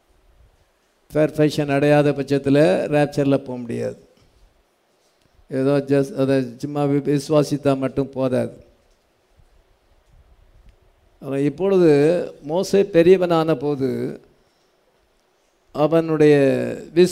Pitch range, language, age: 130-150 Hz, English, 50-69